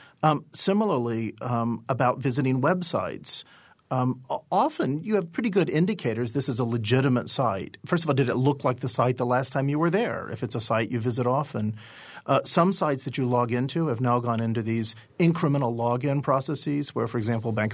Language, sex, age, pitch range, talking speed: English, male, 40-59, 120-160 Hz, 200 wpm